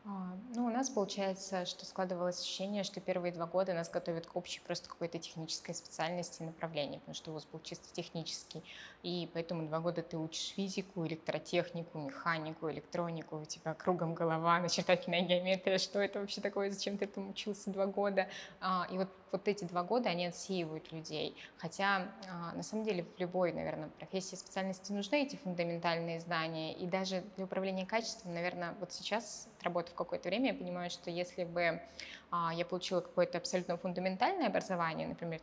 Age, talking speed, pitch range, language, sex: 20-39, 170 wpm, 170-195 Hz, Russian, female